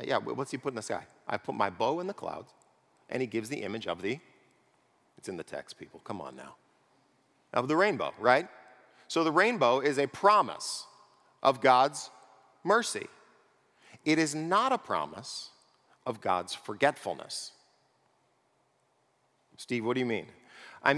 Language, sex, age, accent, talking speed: English, male, 50-69, American, 160 wpm